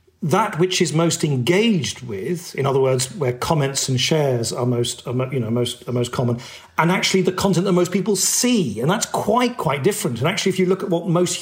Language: English